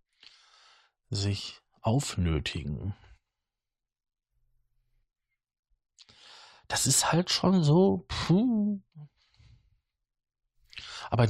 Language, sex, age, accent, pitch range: German, male, 50-69, German, 95-125 Hz